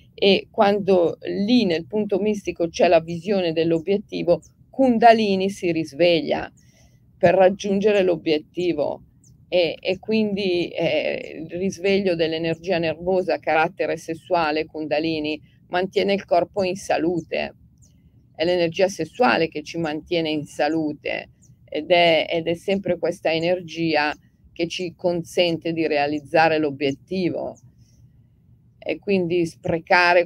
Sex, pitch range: female, 160-190 Hz